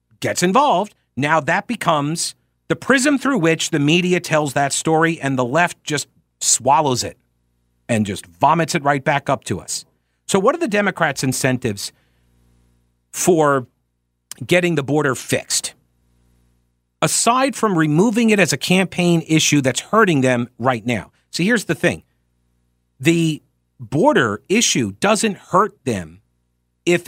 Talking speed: 140 wpm